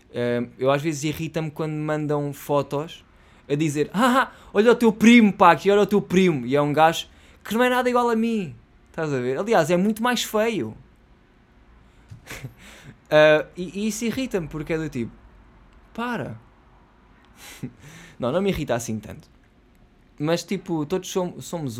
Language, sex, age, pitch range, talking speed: Portuguese, male, 20-39, 125-170 Hz, 165 wpm